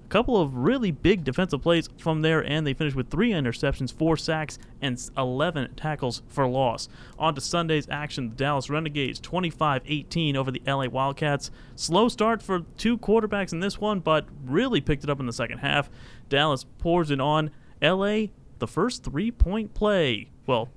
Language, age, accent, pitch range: English, 30-49, American, 130-165 Hz